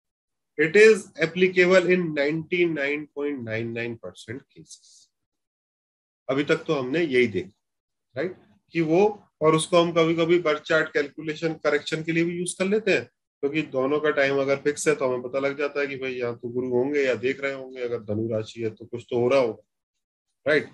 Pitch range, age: 125-165 Hz, 30-49